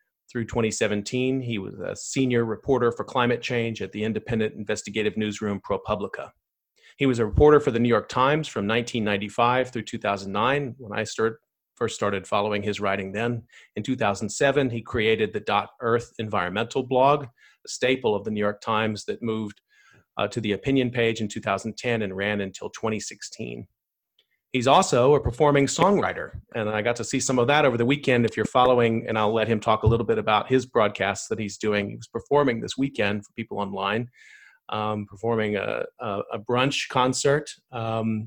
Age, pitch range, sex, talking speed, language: 40-59, 105-130 Hz, male, 175 wpm, English